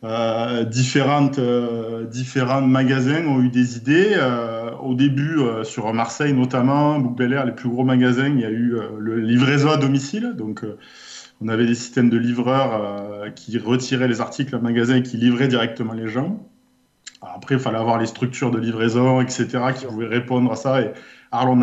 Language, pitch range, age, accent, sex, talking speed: French, 115-135 Hz, 20-39, French, male, 190 wpm